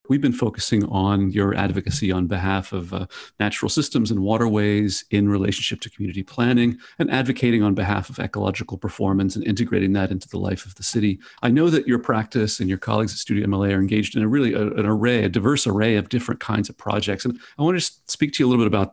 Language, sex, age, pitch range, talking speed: English, male, 40-59, 100-125 Hz, 230 wpm